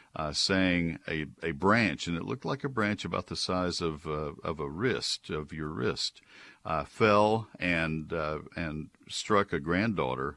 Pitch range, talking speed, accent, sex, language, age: 75-95 Hz, 175 wpm, American, male, English, 60-79